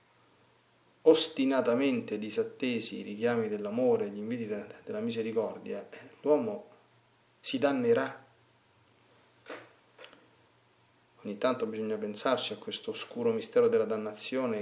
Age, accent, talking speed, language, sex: 30-49, native, 90 wpm, Italian, male